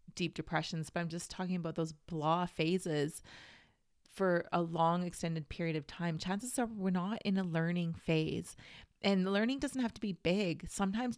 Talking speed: 175 wpm